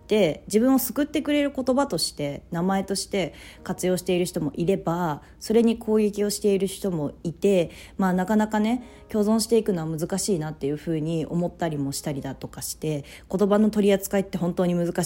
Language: Japanese